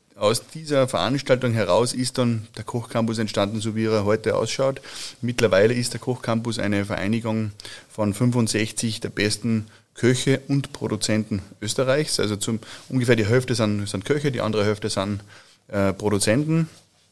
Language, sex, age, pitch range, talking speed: German, male, 30-49, 105-125 Hz, 145 wpm